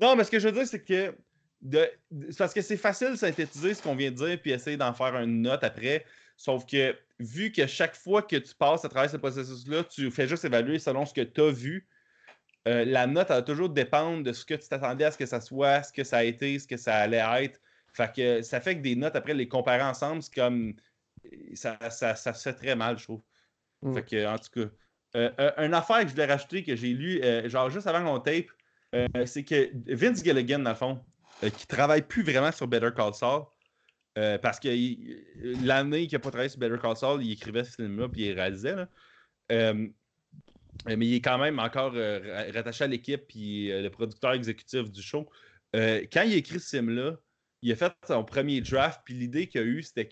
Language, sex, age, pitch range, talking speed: French, male, 30-49, 120-150 Hz, 235 wpm